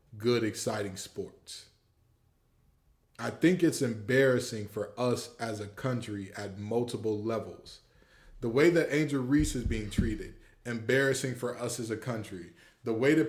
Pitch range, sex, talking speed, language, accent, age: 115-155 Hz, male, 145 wpm, English, American, 20-39